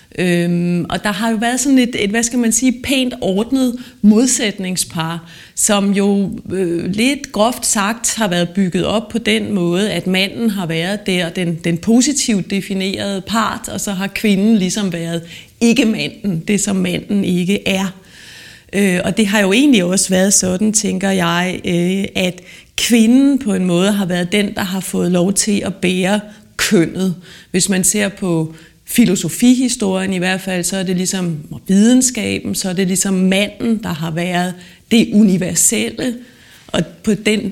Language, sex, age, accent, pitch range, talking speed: Danish, female, 30-49, native, 180-215 Hz, 160 wpm